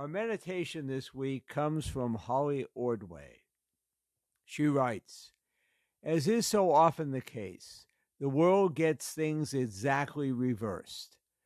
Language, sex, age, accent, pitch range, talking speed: English, male, 60-79, American, 130-165 Hz, 115 wpm